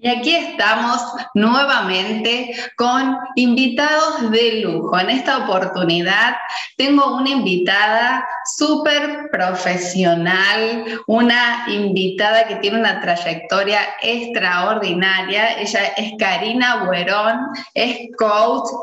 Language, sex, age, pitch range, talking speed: Spanish, female, 20-39, 190-255 Hz, 90 wpm